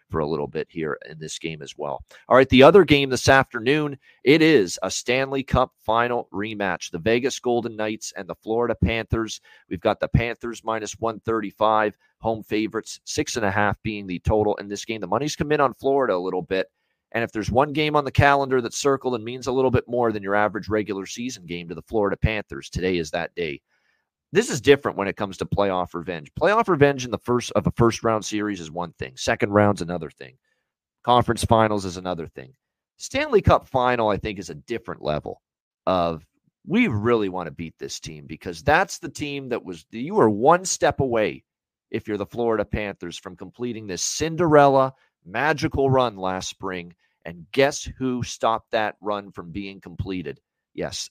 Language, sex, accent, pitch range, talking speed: English, male, American, 95-125 Hz, 200 wpm